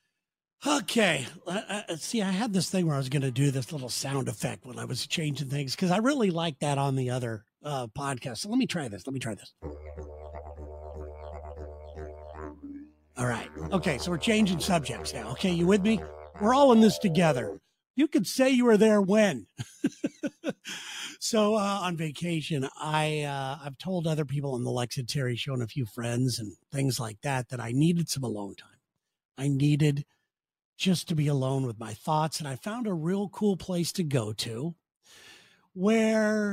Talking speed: 185 wpm